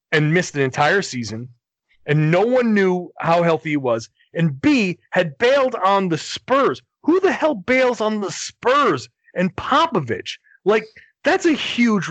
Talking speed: 165 wpm